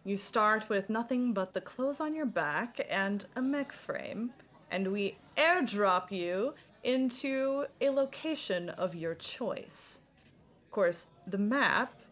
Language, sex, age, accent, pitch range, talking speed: English, female, 20-39, American, 195-270 Hz, 140 wpm